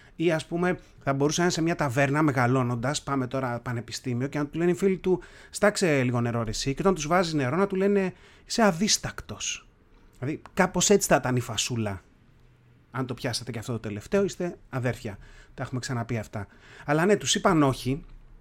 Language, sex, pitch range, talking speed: Greek, male, 120-175 Hz, 195 wpm